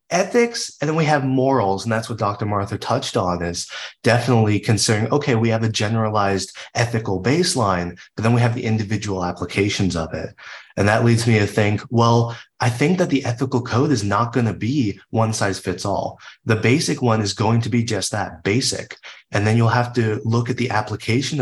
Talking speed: 205 wpm